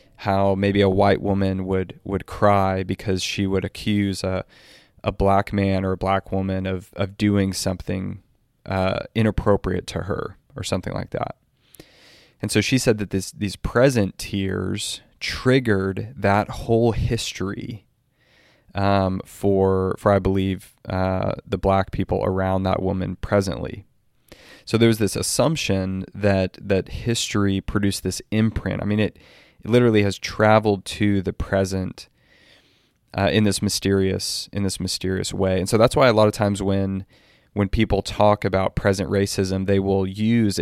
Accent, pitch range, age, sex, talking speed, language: American, 95-105 Hz, 20-39, male, 155 wpm, English